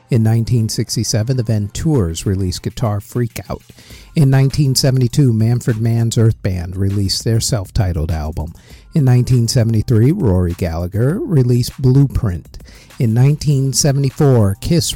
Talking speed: 110 wpm